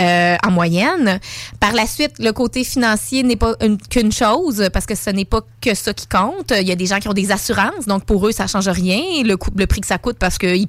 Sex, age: female, 20-39